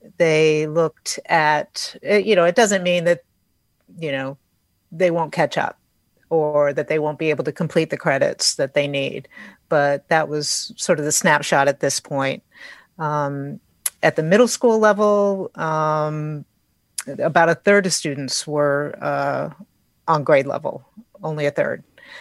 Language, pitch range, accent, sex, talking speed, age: English, 150-185 Hz, American, female, 155 wpm, 40-59